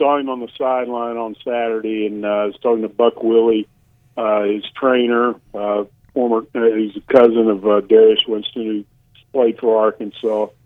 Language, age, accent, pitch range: English, 50-69, American, 110-130 Hz